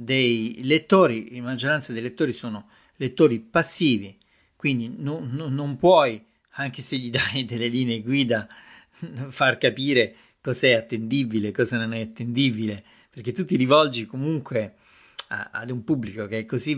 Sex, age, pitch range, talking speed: male, 40-59, 110-135 Hz, 150 wpm